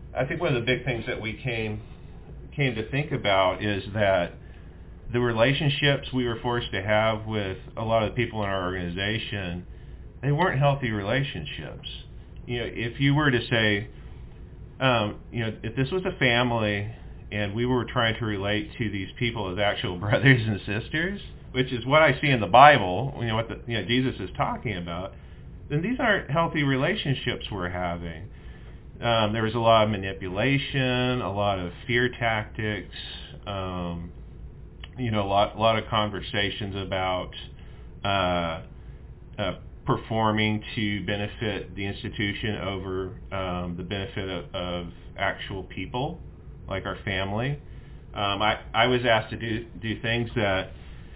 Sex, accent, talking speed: male, American, 165 wpm